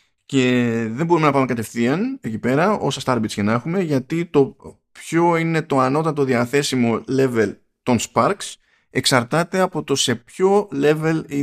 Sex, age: male, 20-39